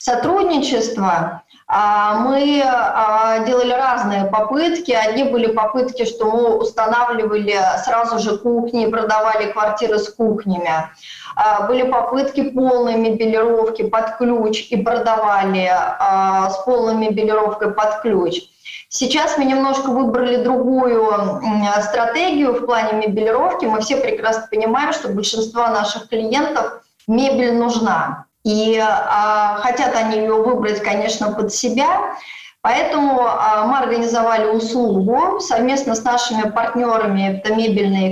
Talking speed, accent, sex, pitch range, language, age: 110 wpm, native, female, 215-255 Hz, Russian, 20-39